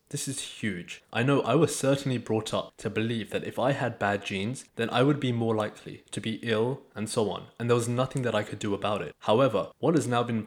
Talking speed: 260 wpm